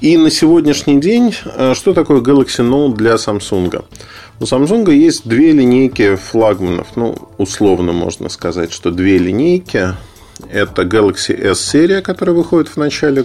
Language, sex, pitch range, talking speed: Russian, male, 95-125 Hz, 140 wpm